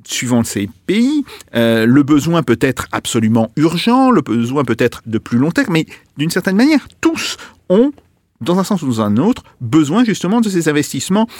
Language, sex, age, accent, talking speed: French, male, 50-69, French, 190 wpm